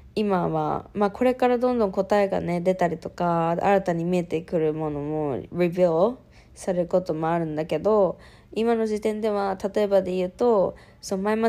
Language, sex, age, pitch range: Japanese, female, 20-39, 160-195 Hz